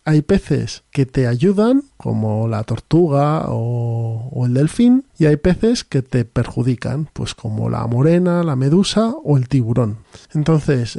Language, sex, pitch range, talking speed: Spanish, male, 130-165 Hz, 155 wpm